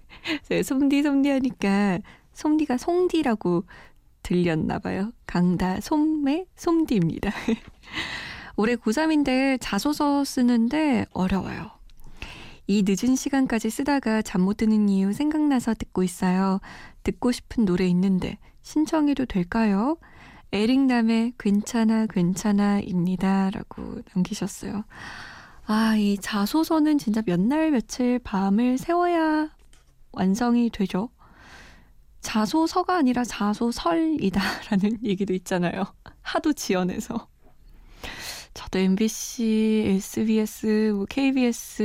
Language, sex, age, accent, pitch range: Korean, female, 20-39, native, 195-275 Hz